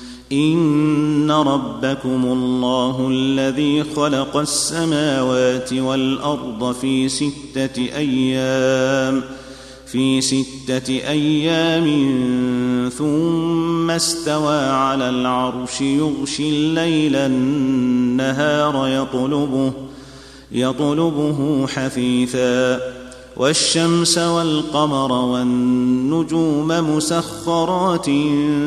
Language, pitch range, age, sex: Arabic, 130-150 Hz, 40-59, male